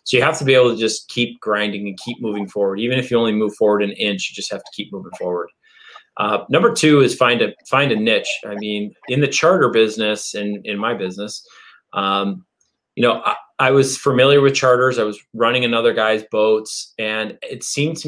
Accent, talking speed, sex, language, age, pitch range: American, 220 wpm, male, English, 30-49, 110-130 Hz